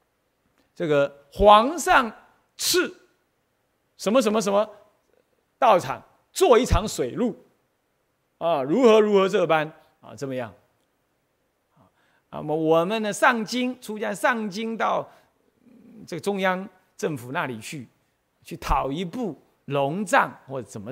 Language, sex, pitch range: Chinese, male, 140-230 Hz